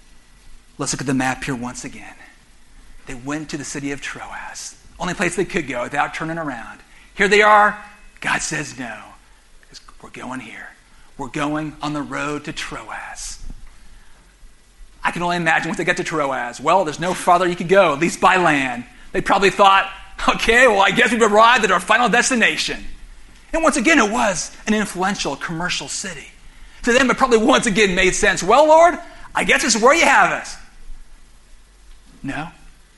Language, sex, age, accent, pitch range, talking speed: English, male, 40-59, American, 140-195 Hz, 180 wpm